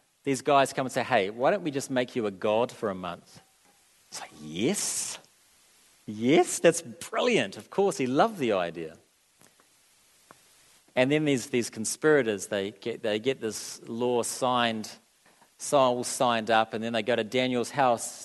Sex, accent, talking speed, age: male, Australian, 170 wpm, 40-59